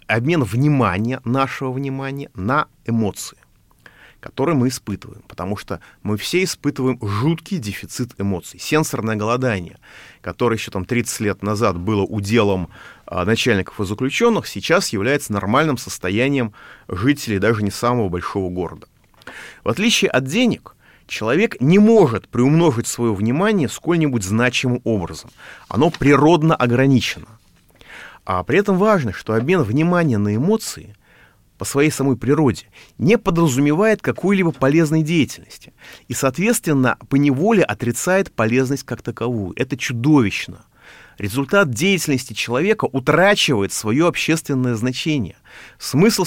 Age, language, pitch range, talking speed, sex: 30-49, Russian, 110-165 Hz, 120 wpm, male